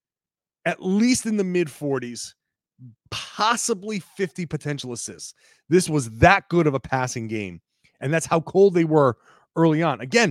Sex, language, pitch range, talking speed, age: male, English, 135-190 Hz, 150 wpm, 30-49